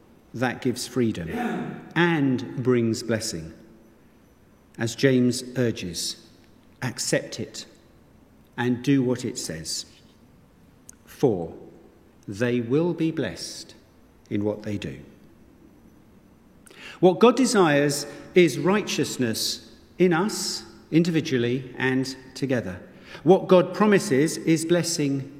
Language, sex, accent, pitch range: English, male, British, 120-175 Hz